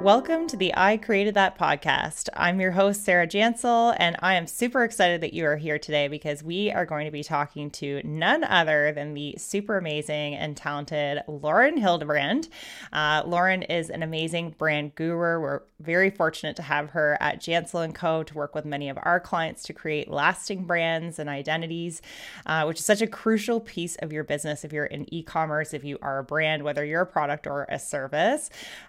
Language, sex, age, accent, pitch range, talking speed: English, female, 20-39, American, 150-190 Hz, 200 wpm